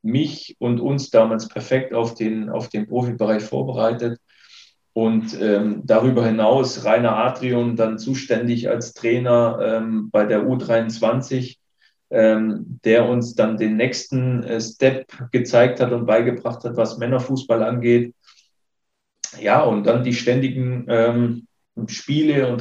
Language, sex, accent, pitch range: German, male, German, 110-125 Hz